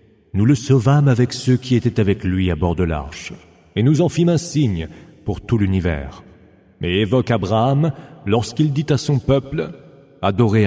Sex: male